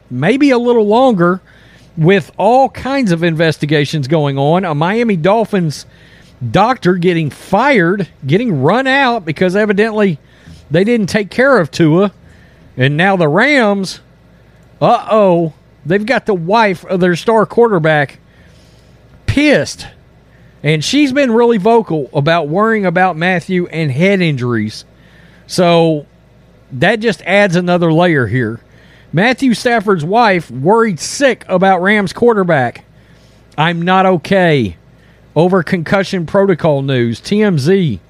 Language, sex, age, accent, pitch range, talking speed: English, male, 40-59, American, 155-220 Hz, 125 wpm